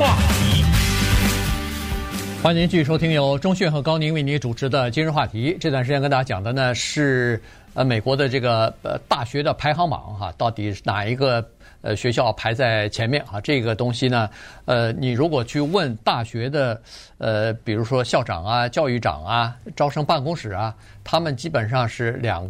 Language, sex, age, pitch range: Chinese, male, 50-69, 110-150 Hz